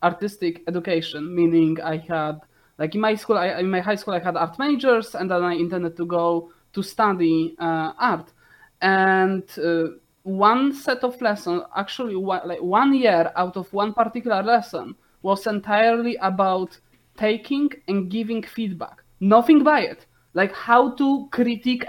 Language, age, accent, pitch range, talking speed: English, 20-39, Polish, 175-235 Hz, 150 wpm